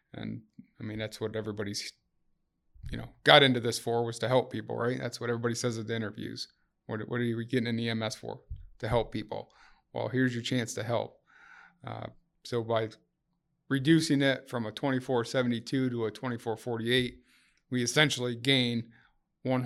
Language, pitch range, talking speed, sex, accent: English, 115-130 Hz, 170 wpm, male, American